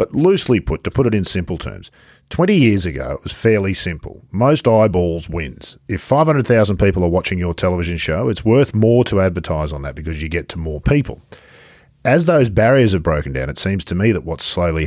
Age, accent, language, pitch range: 50-69, Australian, English, 85-120 Hz